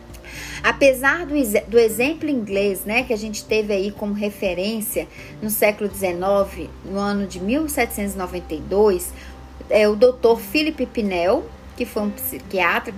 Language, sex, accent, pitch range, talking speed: Portuguese, female, Brazilian, 195-255 Hz, 135 wpm